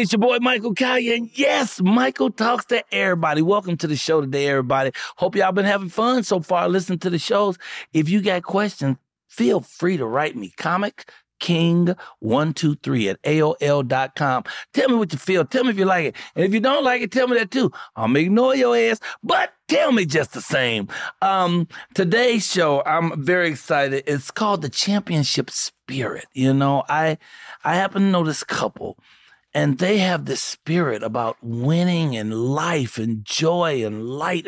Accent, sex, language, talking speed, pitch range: American, male, English, 185 wpm, 145-215 Hz